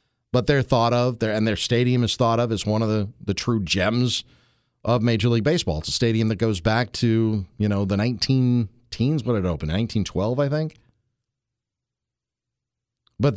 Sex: male